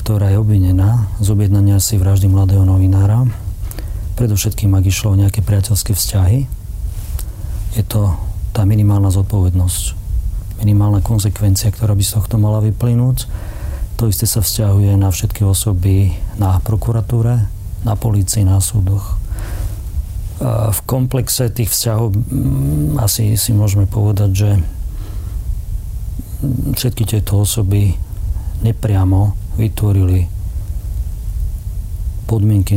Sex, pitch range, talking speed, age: male, 95-105 Hz, 105 wpm, 40-59